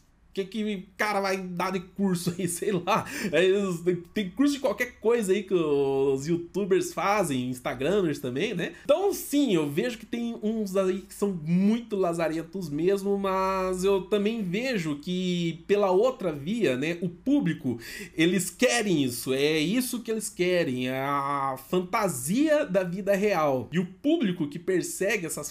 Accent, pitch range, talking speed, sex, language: Brazilian, 170-225 Hz, 160 wpm, male, Portuguese